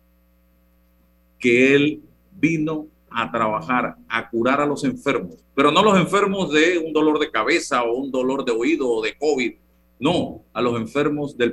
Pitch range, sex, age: 100-150 Hz, male, 50-69